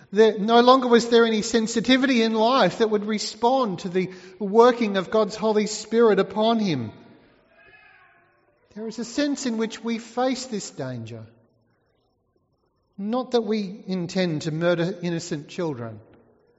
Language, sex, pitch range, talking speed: English, male, 165-220 Hz, 140 wpm